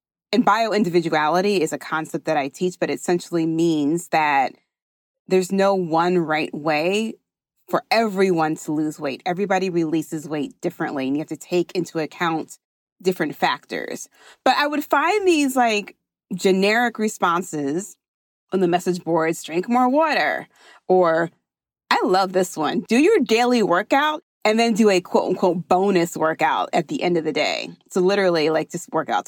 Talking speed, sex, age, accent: 165 wpm, female, 30-49, American